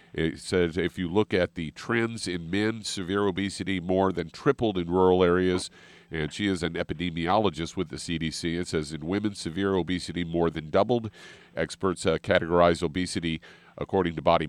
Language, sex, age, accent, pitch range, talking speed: English, male, 50-69, American, 85-100 Hz, 175 wpm